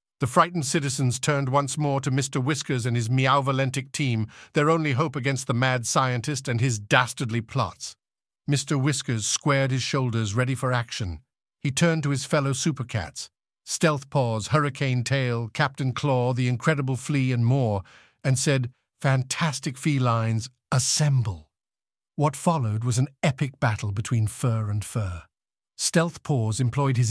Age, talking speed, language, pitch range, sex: 50-69, 150 wpm, English, 125-145 Hz, male